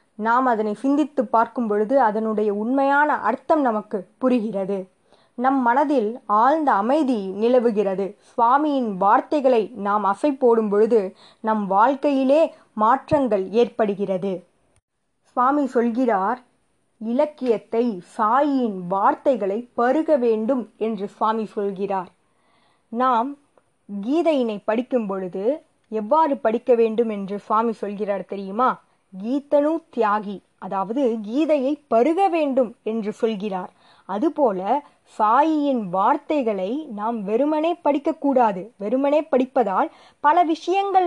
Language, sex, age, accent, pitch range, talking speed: Tamil, female, 20-39, native, 210-280 Hz, 95 wpm